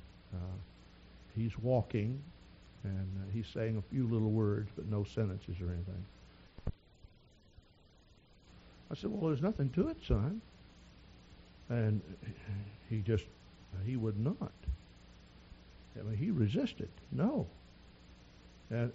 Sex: male